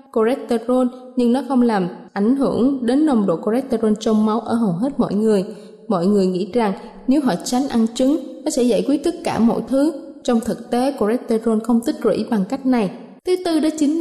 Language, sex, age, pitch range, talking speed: Vietnamese, female, 20-39, 215-270 Hz, 210 wpm